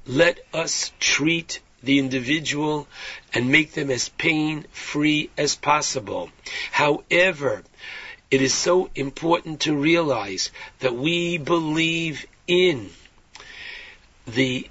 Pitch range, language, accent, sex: 135-170 Hz, English, American, male